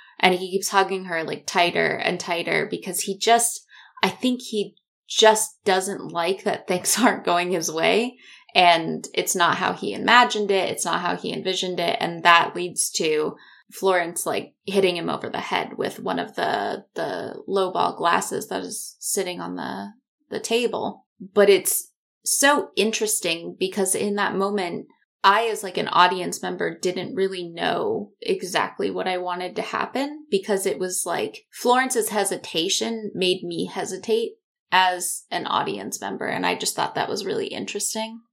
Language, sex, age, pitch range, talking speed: English, female, 20-39, 180-230 Hz, 165 wpm